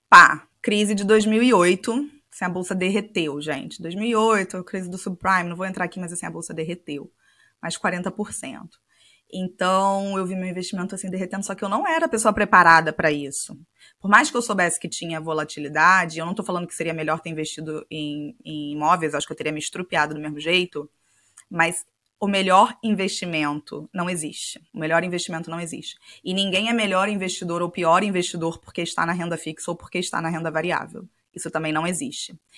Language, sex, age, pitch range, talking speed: Portuguese, female, 20-39, 165-200 Hz, 190 wpm